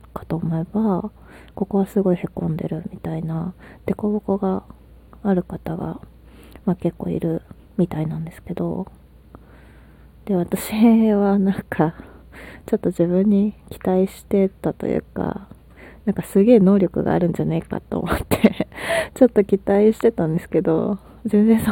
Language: Japanese